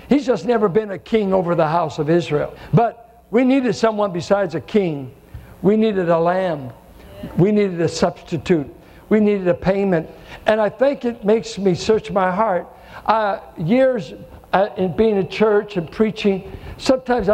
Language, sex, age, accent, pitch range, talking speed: English, male, 60-79, American, 190-240 Hz, 170 wpm